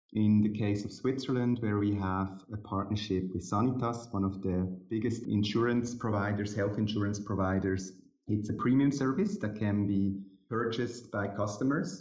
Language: English